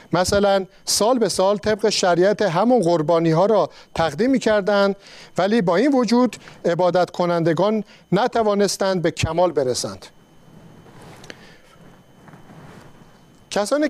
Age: 50-69